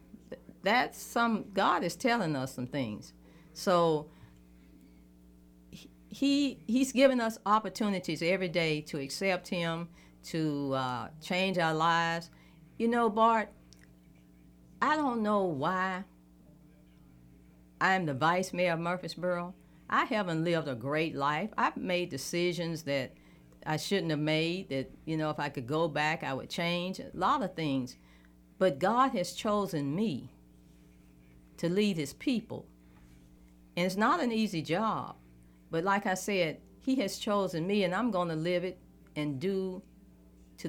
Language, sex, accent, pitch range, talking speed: English, female, American, 125-190 Hz, 145 wpm